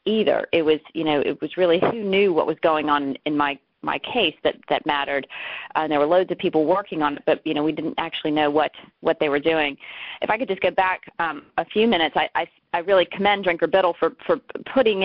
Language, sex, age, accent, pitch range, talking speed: English, female, 30-49, American, 160-195 Hz, 250 wpm